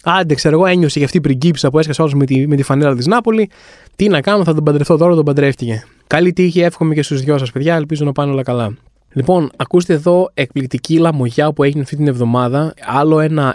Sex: male